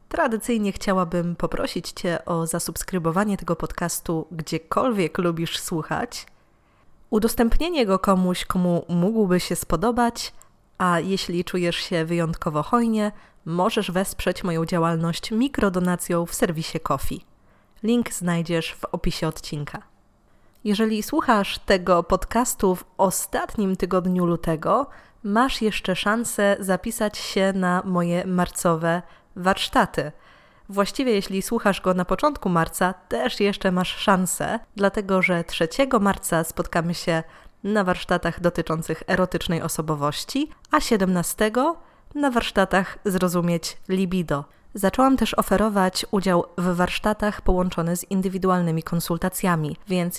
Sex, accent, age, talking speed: female, native, 20-39, 110 wpm